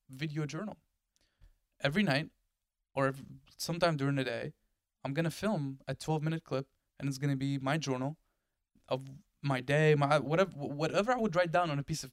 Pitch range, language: 120-155 Hz, English